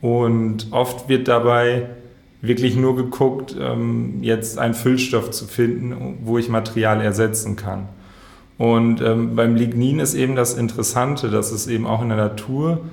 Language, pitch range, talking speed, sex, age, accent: German, 110-130 Hz, 145 wpm, male, 30-49, German